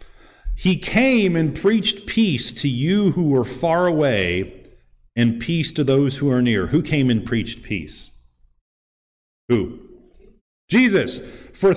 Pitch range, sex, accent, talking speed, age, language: 95-160 Hz, male, American, 135 wpm, 40-59, English